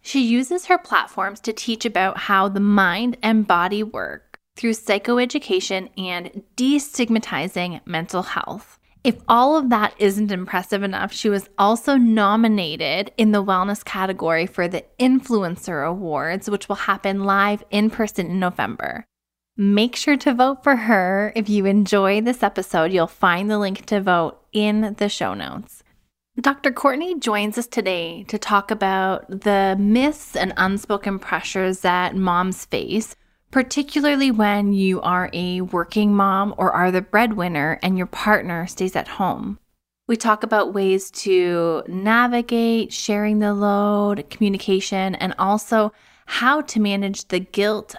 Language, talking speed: English, 145 wpm